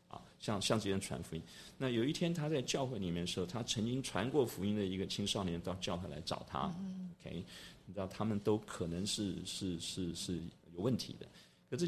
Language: Chinese